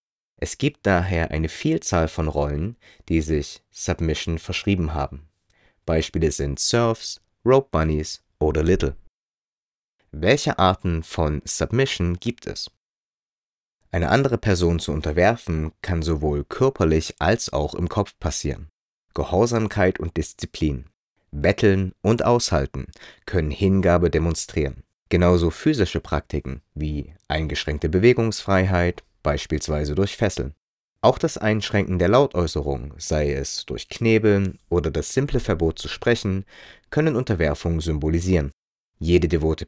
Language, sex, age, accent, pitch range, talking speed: German, male, 30-49, German, 75-100 Hz, 115 wpm